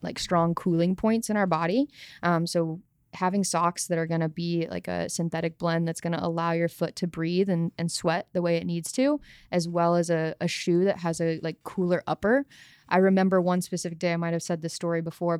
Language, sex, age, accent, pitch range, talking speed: English, female, 20-39, American, 165-185 Hz, 235 wpm